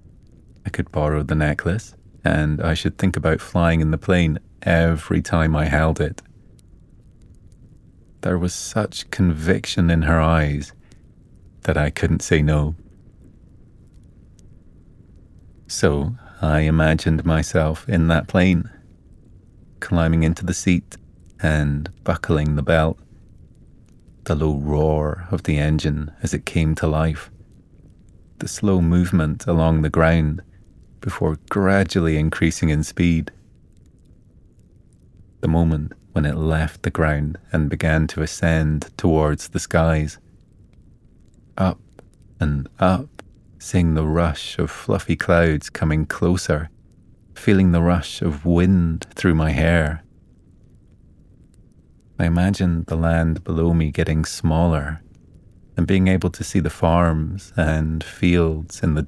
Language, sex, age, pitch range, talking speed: English, male, 30-49, 80-95 Hz, 120 wpm